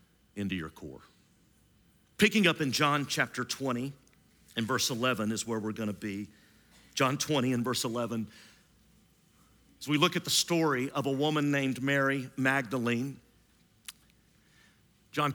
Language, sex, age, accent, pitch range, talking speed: English, male, 50-69, American, 125-165 Hz, 135 wpm